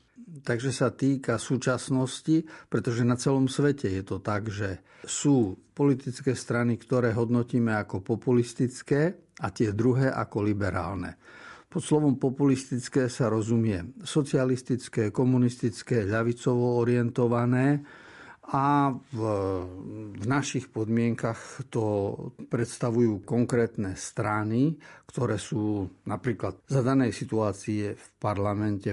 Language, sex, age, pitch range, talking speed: Slovak, male, 50-69, 110-135 Hz, 100 wpm